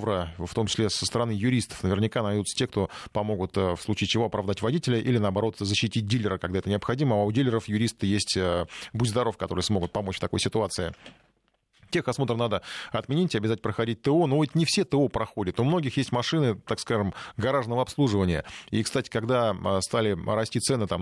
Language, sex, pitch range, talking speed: Russian, male, 100-125 Hz, 185 wpm